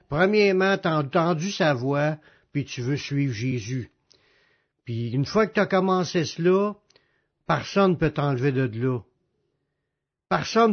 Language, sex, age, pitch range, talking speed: French, male, 60-79, 140-185 Hz, 145 wpm